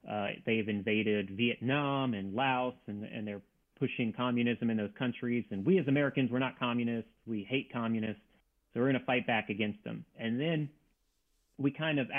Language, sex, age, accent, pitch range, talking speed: English, male, 30-49, American, 110-135 Hz, 185 wpm